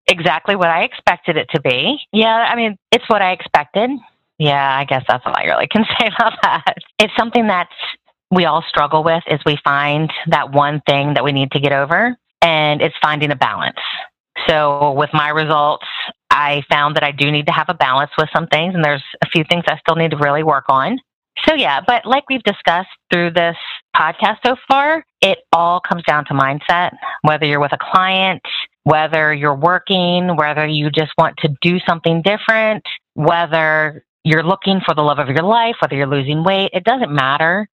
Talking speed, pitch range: 200 wpm, 150-190 Hz